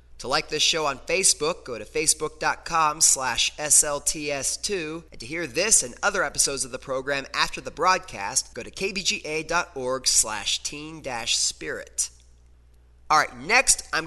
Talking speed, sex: 135 wpm, male